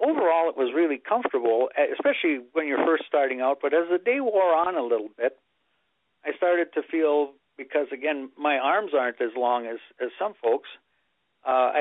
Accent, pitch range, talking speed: American, 125-165 Hz, 185 wpm